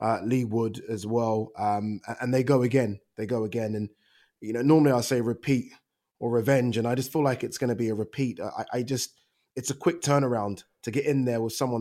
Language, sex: English, male